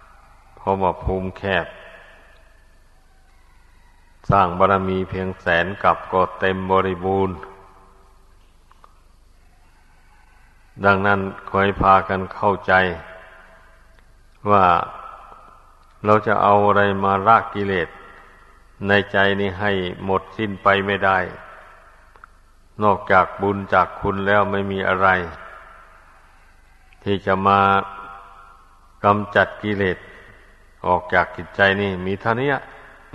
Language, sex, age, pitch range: Thai, male, 60-79, 90-100 Hz